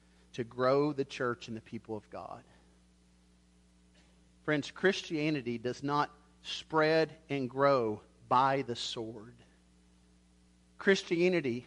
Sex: male